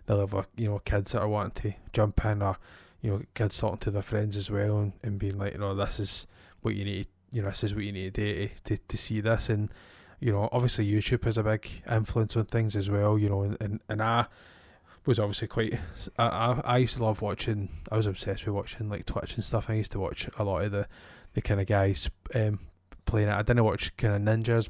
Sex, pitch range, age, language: male, 100-110 Hz, 20-39, English